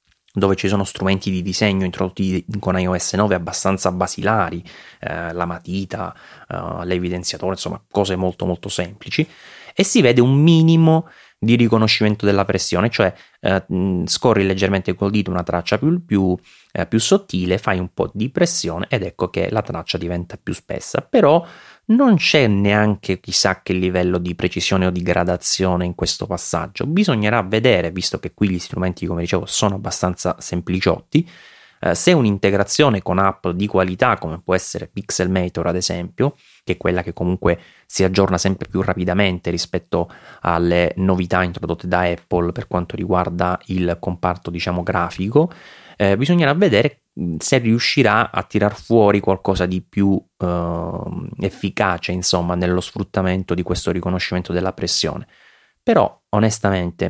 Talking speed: 150 wpm